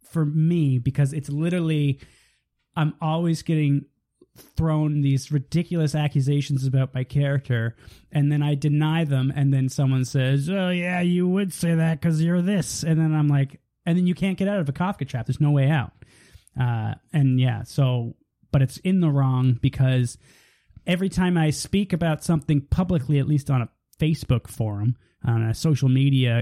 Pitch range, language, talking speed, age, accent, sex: 130-170 Hz, English, 175 wpm, 20-39, American, male